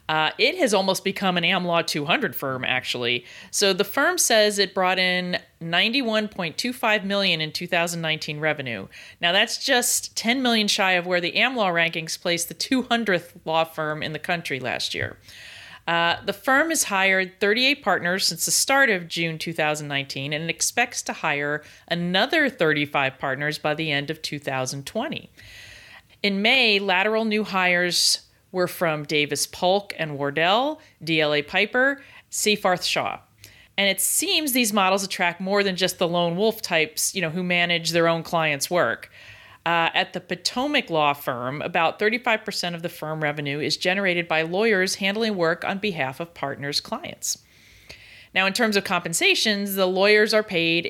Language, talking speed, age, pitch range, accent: English, 160 wpm, 40-59, 155-200 Hz, American